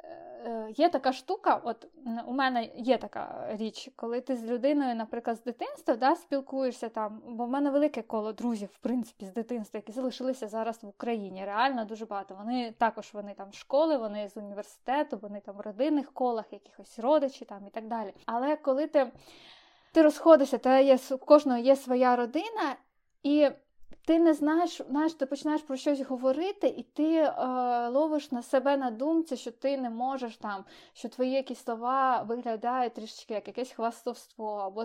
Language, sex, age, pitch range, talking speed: Ukrainian, female, 20-39, 235-285 Hz, 170 wpm